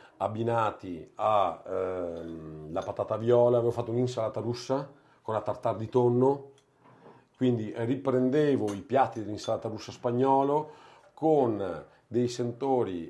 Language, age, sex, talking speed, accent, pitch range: Italian, 50-69, male, 110 wpm, native, 110-145 Hz